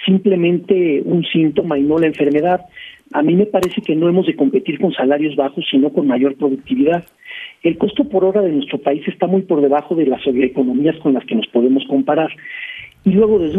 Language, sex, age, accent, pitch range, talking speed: Spanish, male, 50-69, Mexican, 145-210 Hz, 205 wpm